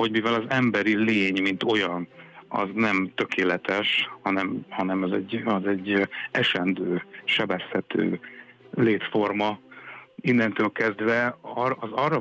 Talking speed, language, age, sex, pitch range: 110 wpm, Hungarian, 60-79, male, 95-120 Hz